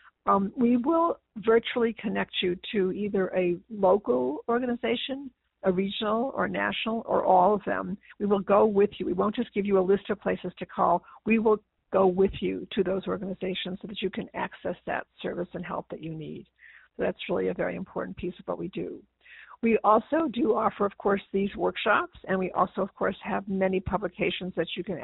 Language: English